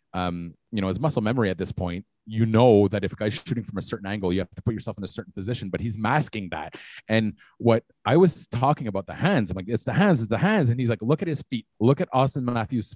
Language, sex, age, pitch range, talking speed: English, male, 30-49, 95-130 Hz, 280 wpm